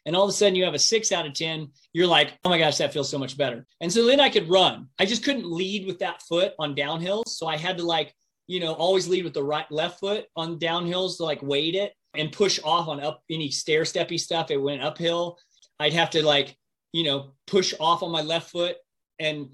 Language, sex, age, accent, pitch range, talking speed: English, male, 30-49, American, 145-185 Hz, 250 wpm